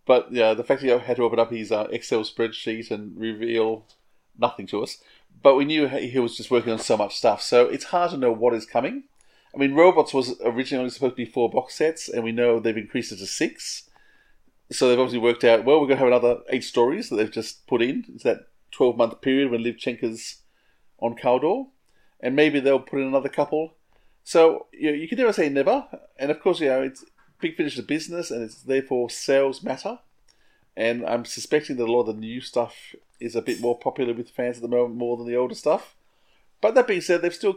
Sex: male